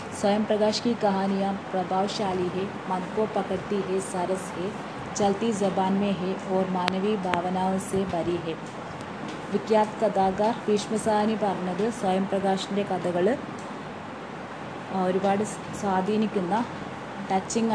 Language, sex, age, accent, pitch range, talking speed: Hindi, female, 20-39, native, 185-210 Hz, 100 wpm